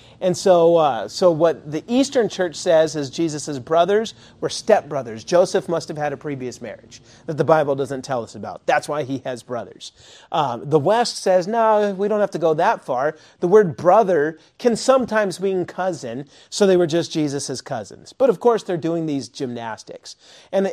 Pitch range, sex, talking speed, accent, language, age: 140-190 Hz, male, 190 wpm, American, English, 40-59